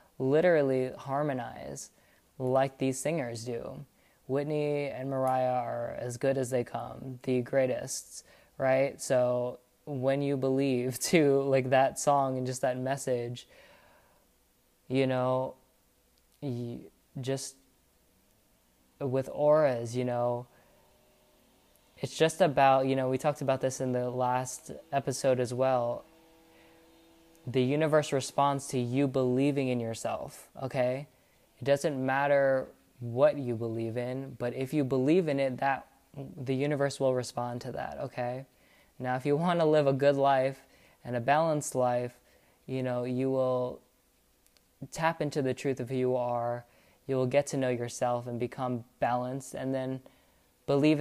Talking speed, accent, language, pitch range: 140 wpm, American, English, 125-140 Hz